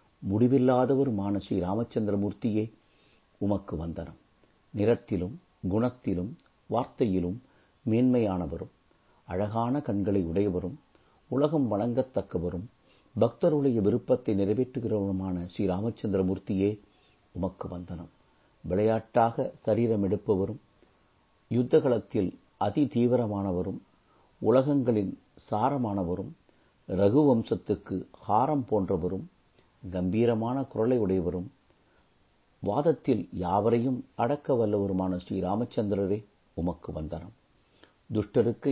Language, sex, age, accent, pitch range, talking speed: Tamil, male, 50-69, native, 90-120 Hz, 70 wpm